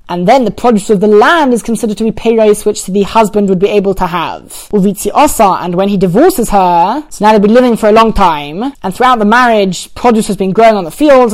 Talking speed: 255 wpm